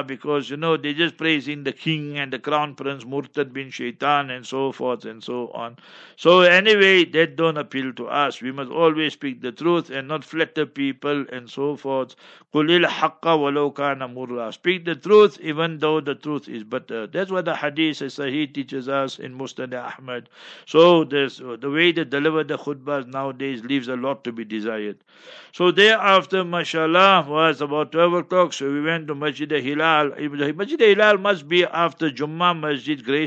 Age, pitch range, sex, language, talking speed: 60-79, 140-165 Hz, male, English, 185 wpm